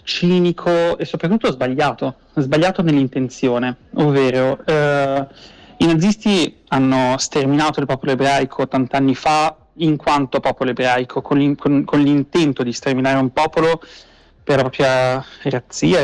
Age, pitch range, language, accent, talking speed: 30-49, 130-155 Hz, Italian, native, 130 wpm